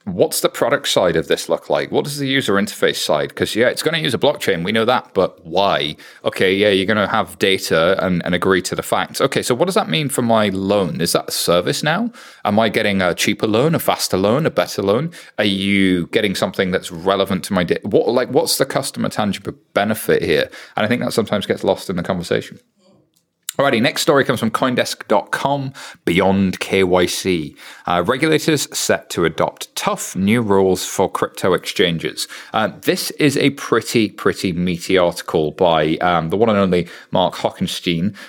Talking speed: 195 wpm